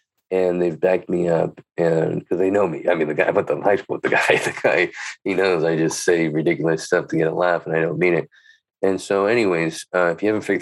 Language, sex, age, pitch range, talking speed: English, male, 20-39, 85-95 Hz, 260 wpm